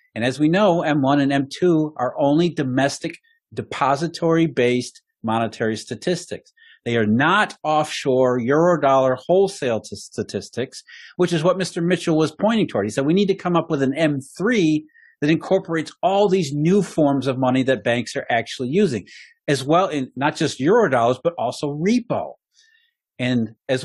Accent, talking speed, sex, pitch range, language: American, 155 wpm, male, 135-180 Hz, English